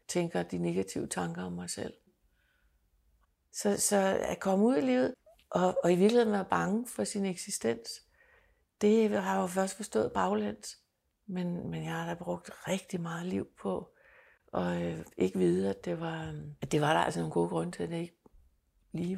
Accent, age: native, 60-79